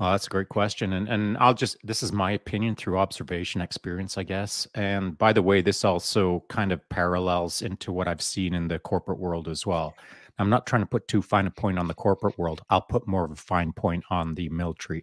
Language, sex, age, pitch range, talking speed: English, male, 30-49, 90-110 Hz, 240 wpm